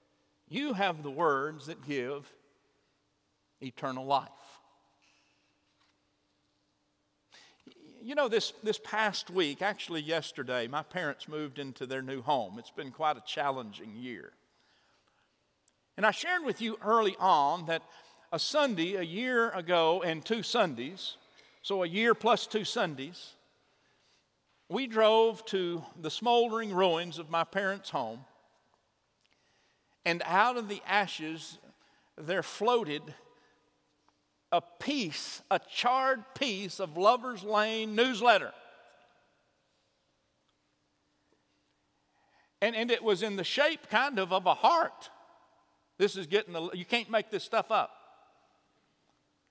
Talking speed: 120 wpm